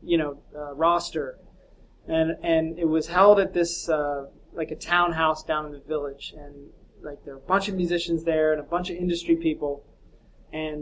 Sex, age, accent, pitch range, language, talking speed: male, 20-39, American, 155-200 Hz, English, 195 wpm